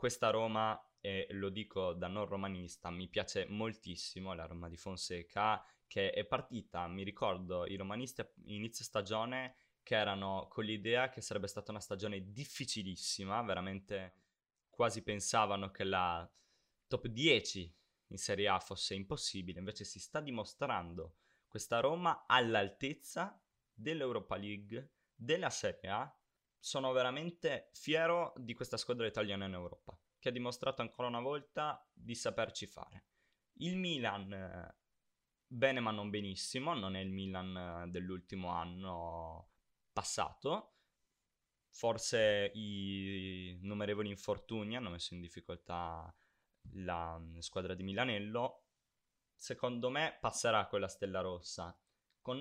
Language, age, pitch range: Italian, 20-39, 90-120 Hz